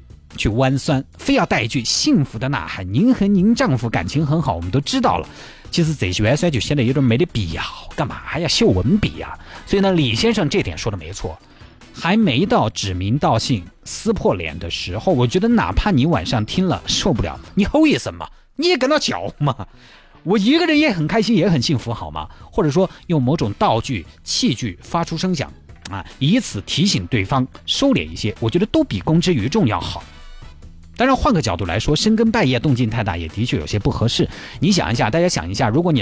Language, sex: Chinese, male